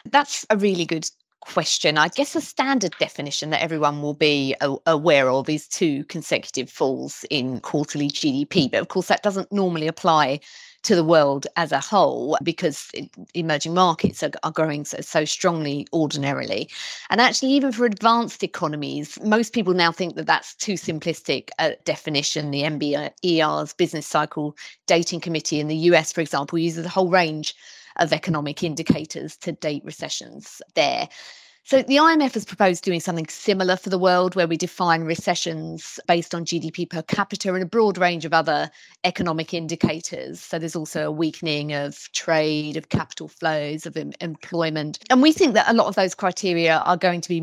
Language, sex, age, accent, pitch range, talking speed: English, female, 40-59, British, 155-185 Hz, 170 wpm